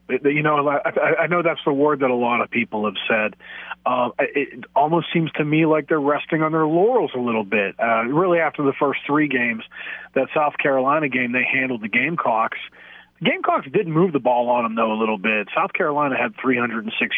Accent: American